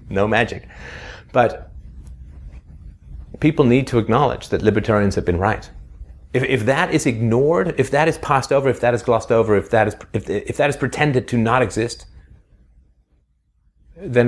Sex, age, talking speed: male, 30-49, 165 wpm